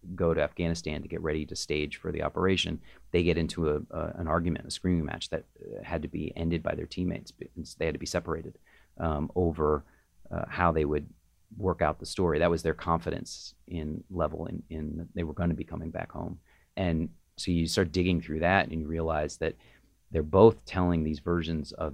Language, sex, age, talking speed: English, male, 30-49, 210 wpm